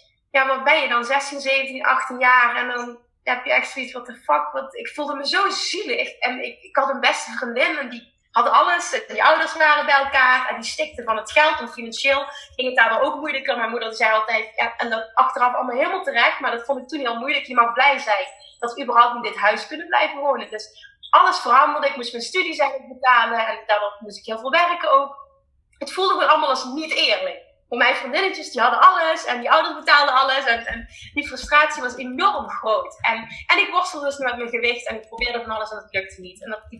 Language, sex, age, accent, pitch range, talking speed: Dutch, female, 30-49, Dutch, 240-305 Hz, 240 wpm